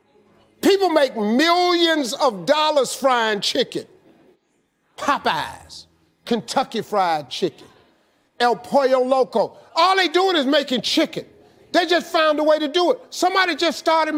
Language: English